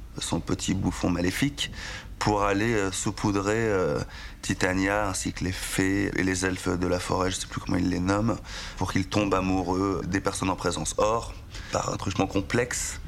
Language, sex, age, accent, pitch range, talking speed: French, male, 30-49, French, 95-105 Hz, 185 wpm